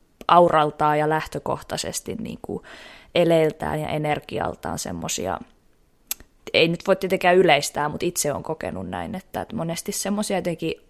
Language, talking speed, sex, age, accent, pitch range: Finnish, 120 wpm, female, 20-39, native, 155-185 Hz